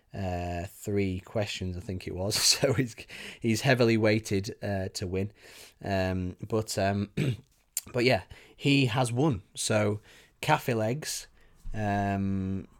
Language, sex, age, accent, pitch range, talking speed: English, male, 20-39, British, 95-110 Hz, 125 wpm